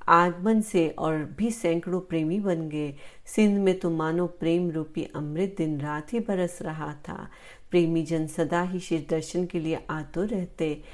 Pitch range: 155-185 Hz